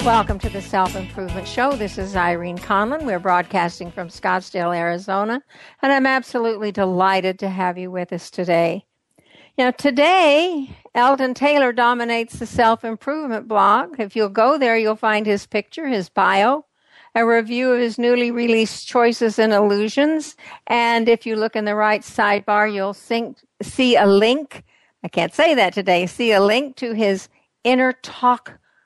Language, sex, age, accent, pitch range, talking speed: English, female, 60-79, American, 195-255 Hz, 155 wpm